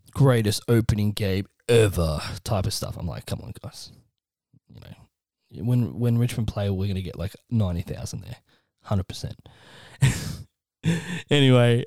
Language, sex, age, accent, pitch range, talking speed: English, male, 20-39, Australian, 100-120 Hz, 140 wpm